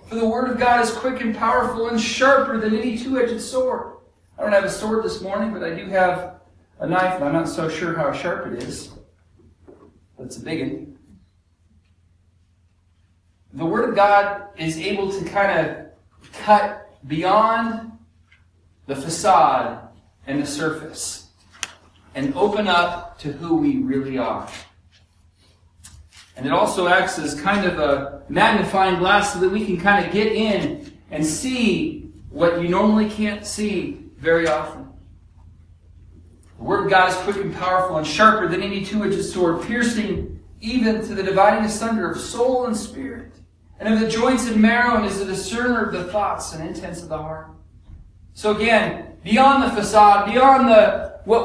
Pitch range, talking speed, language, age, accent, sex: 140-220 Hz, 165 wpm, English, 40-59, American, male